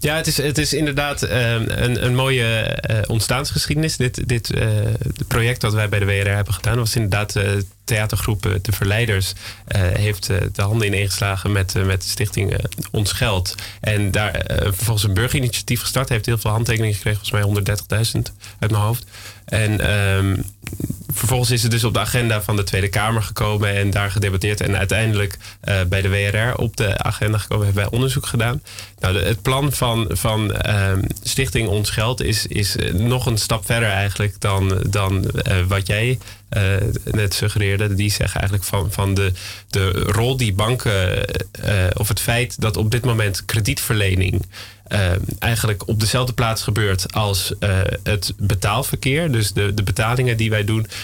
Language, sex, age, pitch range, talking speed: Dutch, male, 20-39, 100-115 Hz, 180 wpm